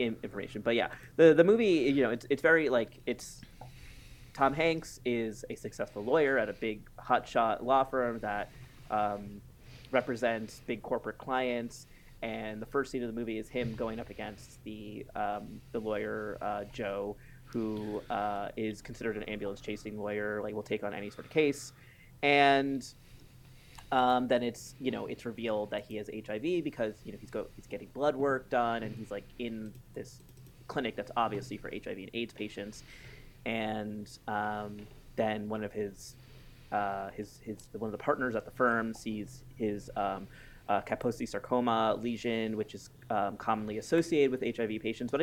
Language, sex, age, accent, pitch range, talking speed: English, male, 20-39, American, 105-130 Hz, 175 wpm